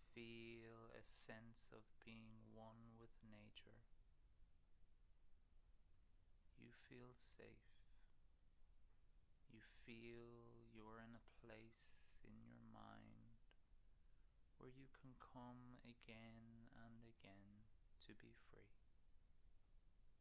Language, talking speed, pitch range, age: English, 90 wpm, 90-115 Hz, 20-39